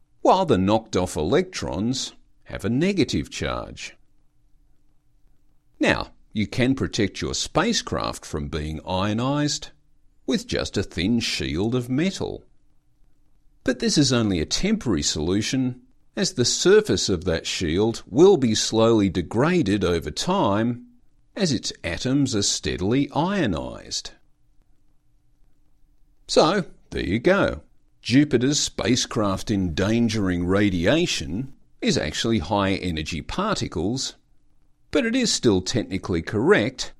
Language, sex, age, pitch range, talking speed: English, male, 50-69, 90-135 Hz, 110 wpm